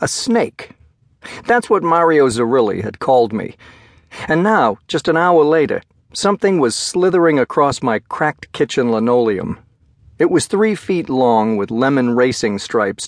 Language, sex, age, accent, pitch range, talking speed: English, male, 50-69, American, 115-145 Hz, 145 wpm